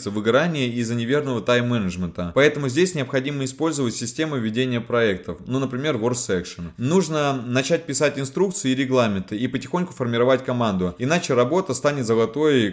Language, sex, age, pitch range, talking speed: Russian, male, 20-39, 115-140 Hz, 140 wpm